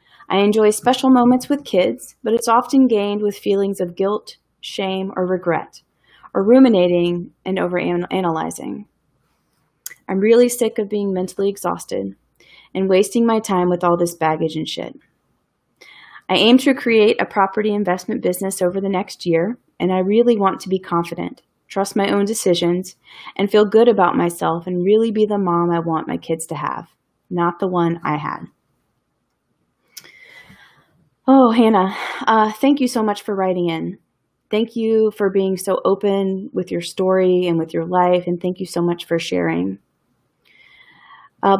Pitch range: 175-215 Hz